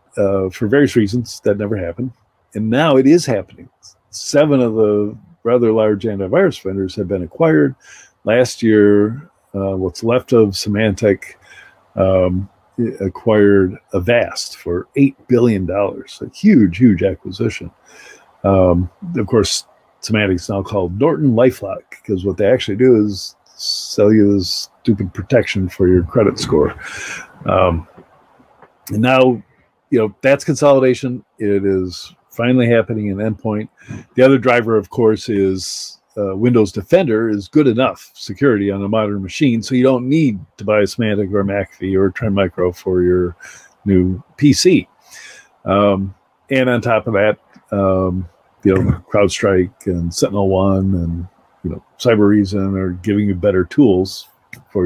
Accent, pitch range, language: American, 95-120 Hz, English